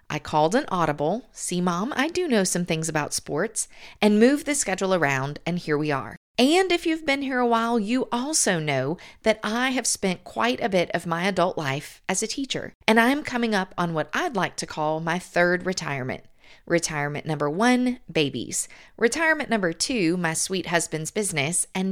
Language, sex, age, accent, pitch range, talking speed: English, female, 40-59, American, 165-220 Hz, 195 wpm